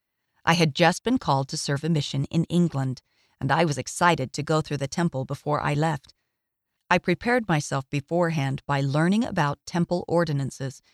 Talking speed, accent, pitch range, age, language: 175 wpm, American, 140-180 Hz, 40-59, English